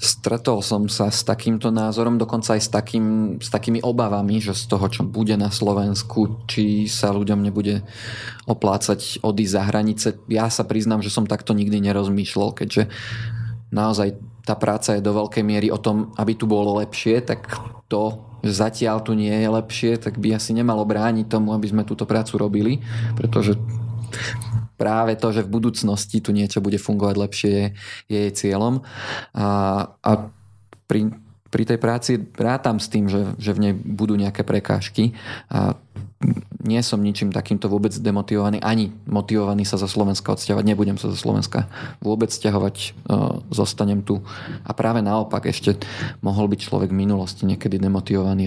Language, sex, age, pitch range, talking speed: Slovak, male, 20-39, 105-115 Hz, 160 wpm